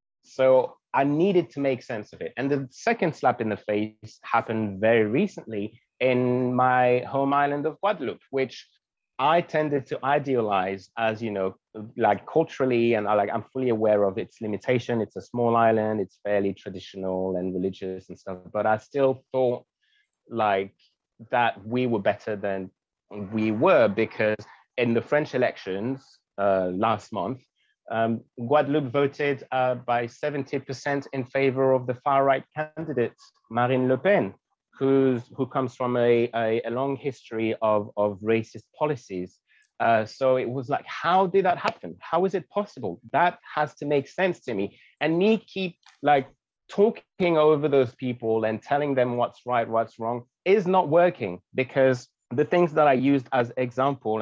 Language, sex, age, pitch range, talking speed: English, male, 30-49, 110-145 Hz, 160 wpm